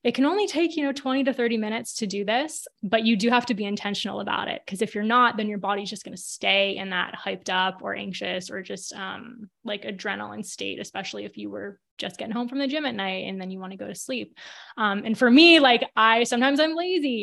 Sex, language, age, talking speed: female, English, 20-39, 260 wpm